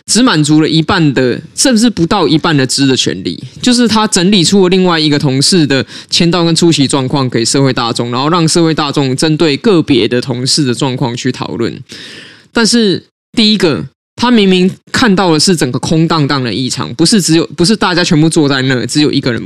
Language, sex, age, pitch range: Chinese, male, 20-39, 140-185 Hz